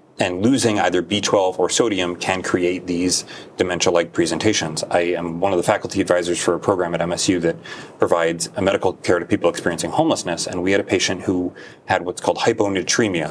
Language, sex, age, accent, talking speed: English, male, 30-49, American, 185 wpm